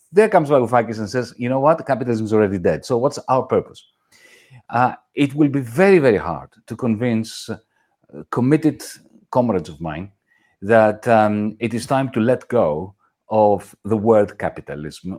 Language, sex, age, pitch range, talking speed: English, male, 50-69, 110-155 Hz, 165 wpm